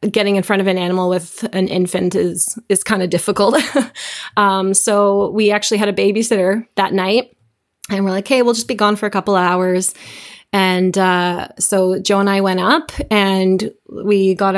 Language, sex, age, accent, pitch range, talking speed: English, female, 20-39, American, 185-210 Hz, 195 wpm